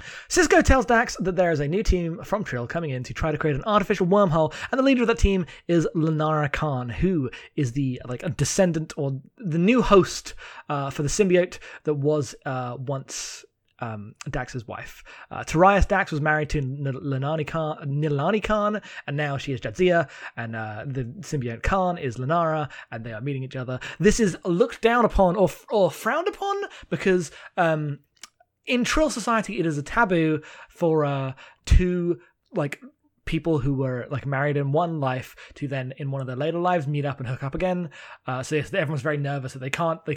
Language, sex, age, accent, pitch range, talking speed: English, male, 20-39, British, 135-180 Hz, 200 wpm